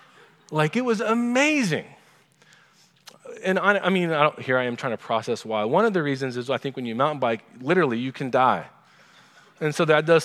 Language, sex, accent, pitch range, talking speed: English, male, American, 135-180 Hz, 200 wpm